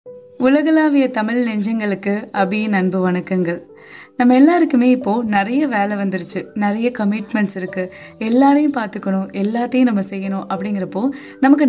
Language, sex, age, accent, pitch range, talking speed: Tamil, female, 20-39, native, 190-255 Hz, 115 wpm